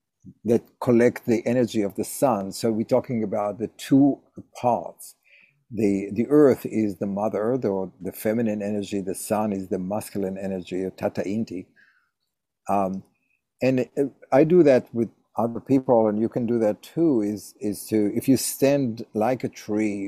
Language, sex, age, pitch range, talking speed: English, male, 50-69, 100-125 Hz, 165 wpm